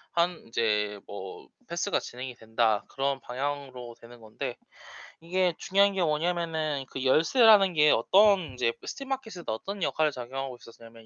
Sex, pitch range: male, 125-200 Hz